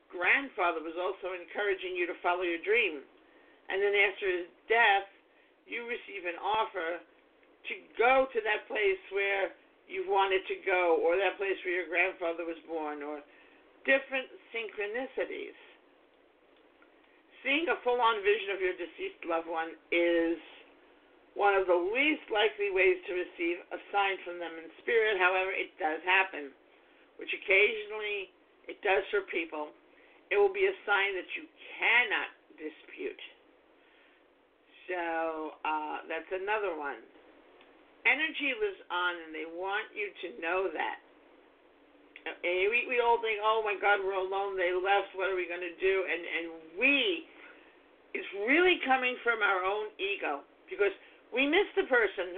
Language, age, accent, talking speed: English, 50-69, American, 150 wpm